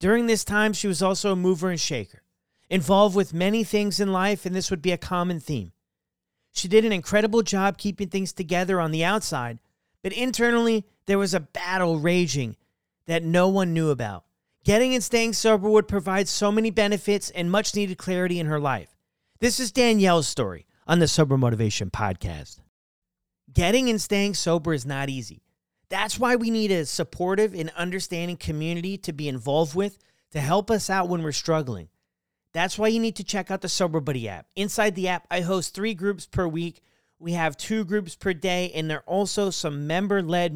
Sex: male